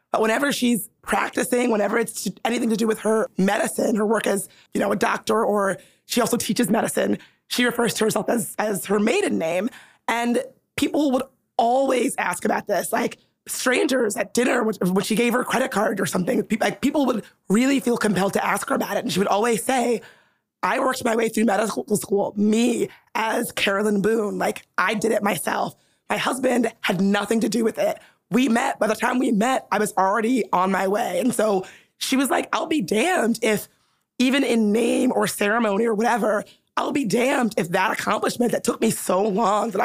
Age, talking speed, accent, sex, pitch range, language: 20-39, 205 wpm, American, female, 205-245 Hz, English